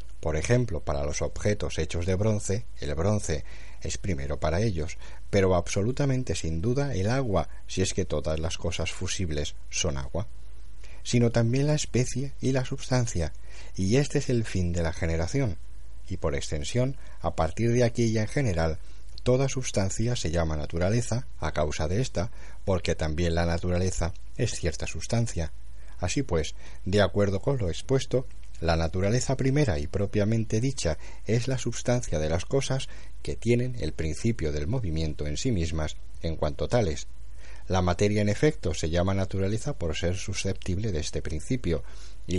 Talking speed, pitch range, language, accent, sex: 165 wpm, 80-120 Hz, Spanish, Spanish, male